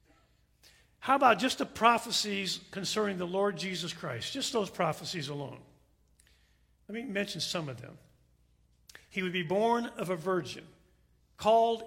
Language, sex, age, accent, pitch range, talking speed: English, male, 50-69, American, 175-230 Hz, 140 wpm